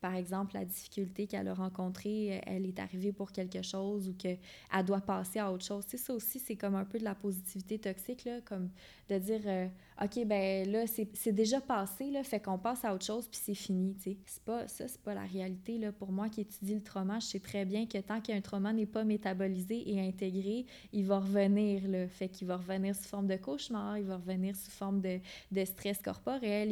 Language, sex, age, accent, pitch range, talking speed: French, female, 20-39, Canadian, 190-215 Hz, 235 wpm